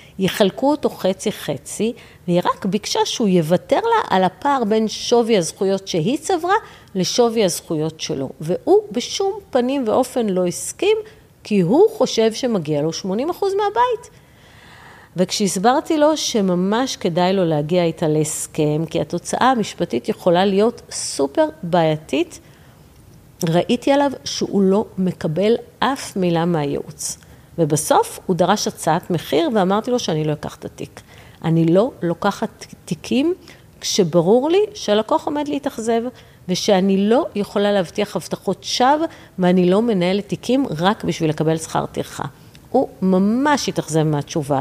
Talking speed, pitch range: 130 wpm, 170-245 Hz